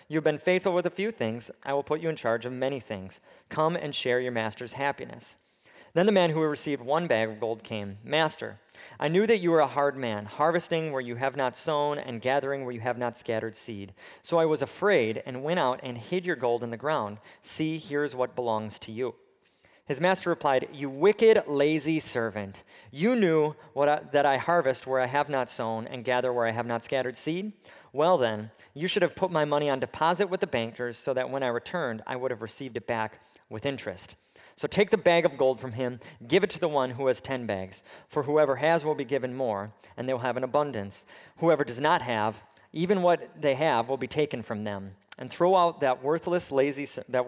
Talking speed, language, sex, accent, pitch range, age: 225 wpm, English, male, American, 115-155 Hz, 40-59